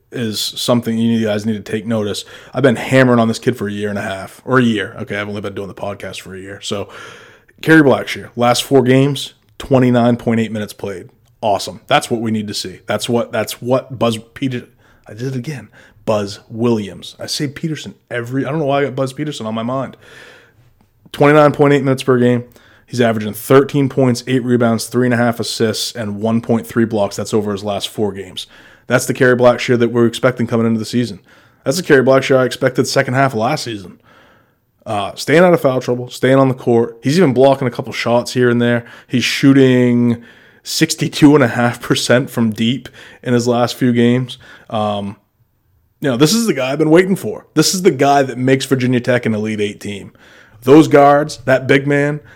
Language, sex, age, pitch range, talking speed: English, male, 20-39, 110-135 Hz, 205 wpm